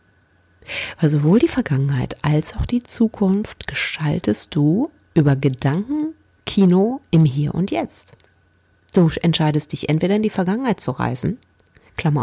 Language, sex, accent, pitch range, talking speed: German, female, German, 140-205 Hz, 130 wpm